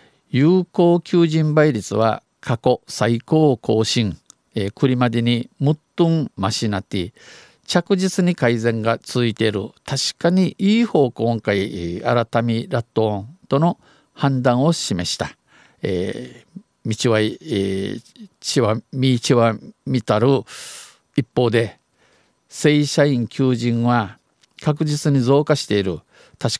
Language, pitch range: Japanese, 115-145 Hz